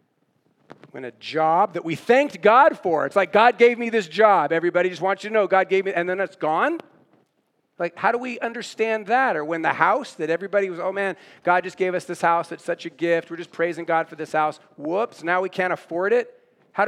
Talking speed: 240 wpm